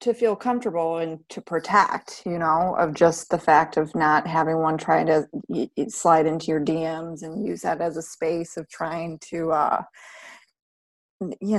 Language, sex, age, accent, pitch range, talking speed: English, female, 30-49, American, 165-225 Hz, 170 wpm